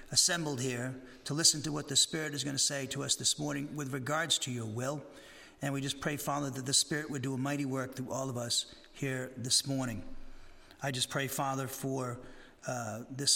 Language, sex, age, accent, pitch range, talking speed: English, male, 40-59, American, 130-150 Hz, 215 wpm